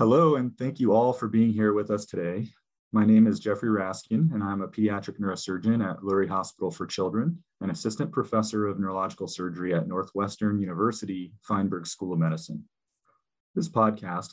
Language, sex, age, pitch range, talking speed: English, male, 30-49, 90-110 Hz, 170 wpm